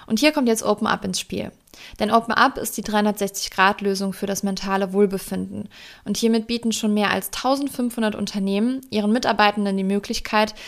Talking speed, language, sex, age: 170 wpm, German, female, 20-39